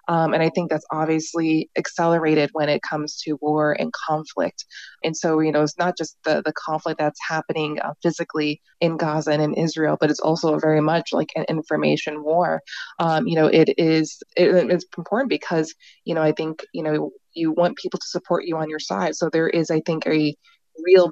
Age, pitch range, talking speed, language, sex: 20-39, 155-175 Hz, 205 wpm, Czech, female